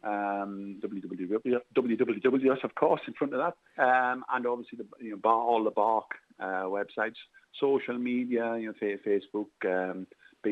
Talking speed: 160 wpm